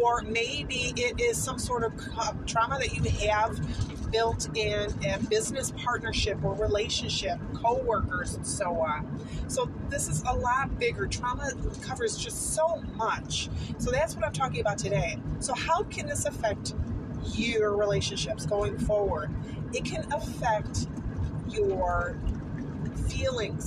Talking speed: 135 wpm